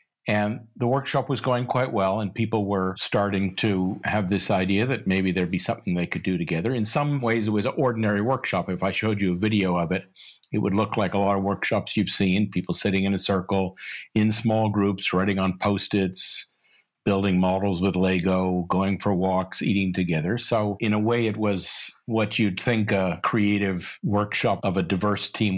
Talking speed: 200 wpm